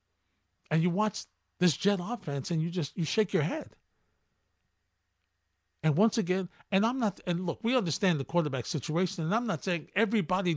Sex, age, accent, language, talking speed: male, 50-69, American, English, 175 wpm